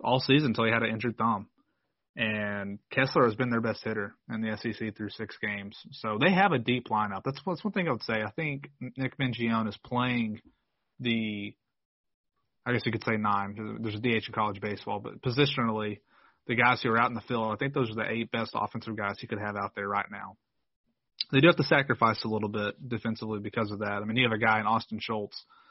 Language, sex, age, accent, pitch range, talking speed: English, male, 30-49, American, 110-130 Hz, 235 wpm